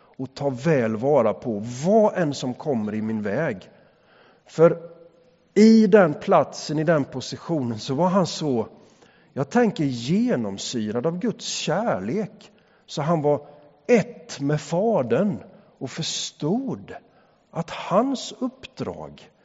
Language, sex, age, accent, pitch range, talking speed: English, male, 50-69, Swedish, 130-200 Hz, 120 wpm